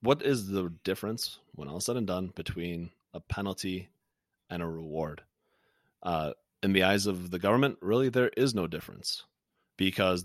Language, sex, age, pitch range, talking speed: English, male, 30-49, 85-100 Hz, 165 wpm